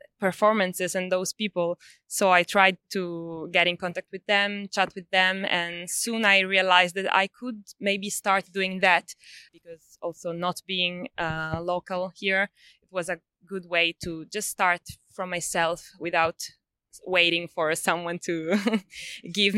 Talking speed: 155 wpm